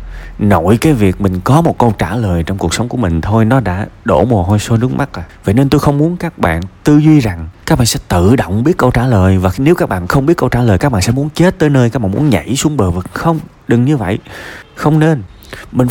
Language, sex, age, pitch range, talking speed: Vietnamese, male, 20-39, 95-135 Hz, 275 wpm